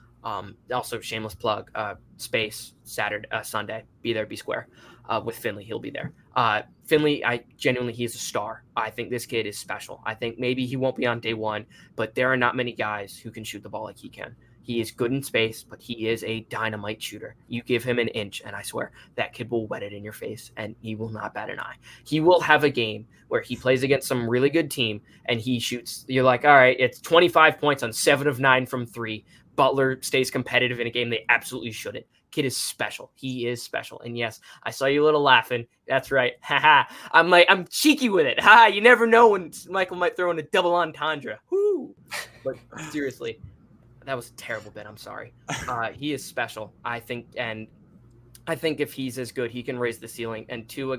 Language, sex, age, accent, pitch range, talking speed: English, male, 20-39, American, 115-140 Hz, 225 wpm